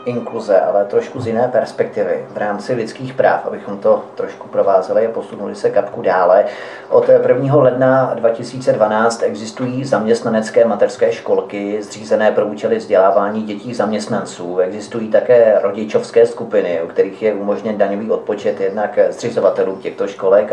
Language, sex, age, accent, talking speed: Czech, male, 40-59, native, 135 wpm